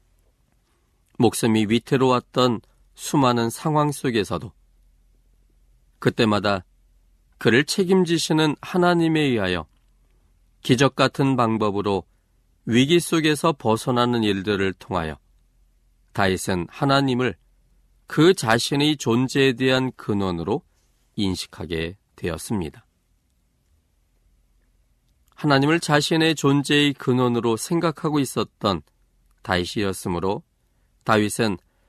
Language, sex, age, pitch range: Korean, male, 40-59, 85-130 Hz